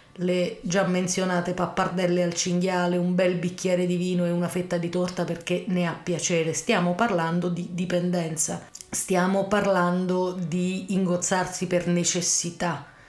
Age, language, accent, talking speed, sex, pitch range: 30-49, Italian, native, 140 wpm, female, 170-185 Hz